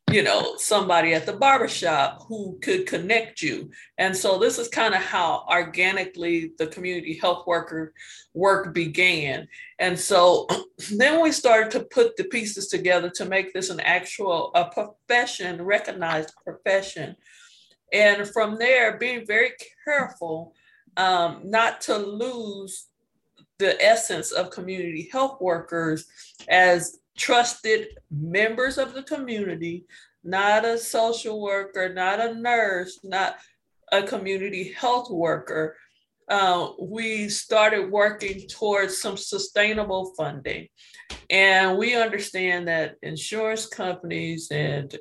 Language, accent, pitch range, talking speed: English, American, 175-220 Hz, 125 wpm